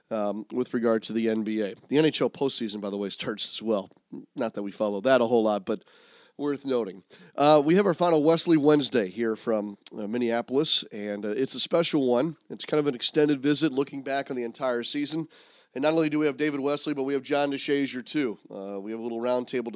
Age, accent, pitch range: 40-59, American, 115-145 Hz